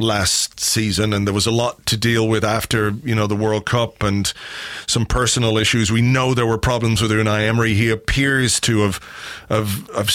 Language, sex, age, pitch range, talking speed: English, male, 30-49, 110-135 Hz, 200 wpm